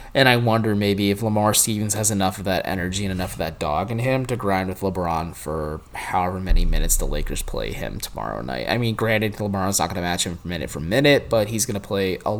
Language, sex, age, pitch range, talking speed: English, male, 20-39, 90-115 Hz, 245 wpm